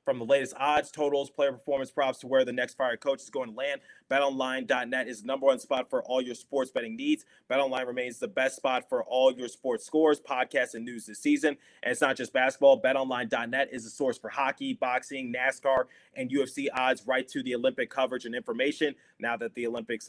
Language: English